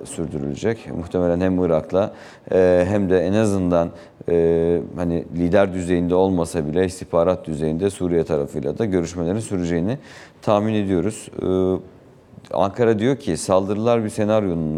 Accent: native